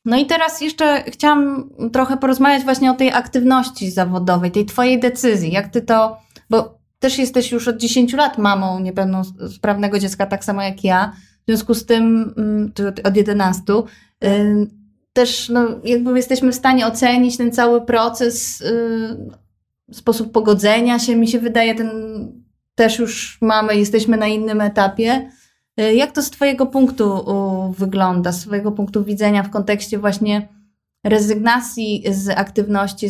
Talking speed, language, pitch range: 140 wpm, Polish, 195-240 Hz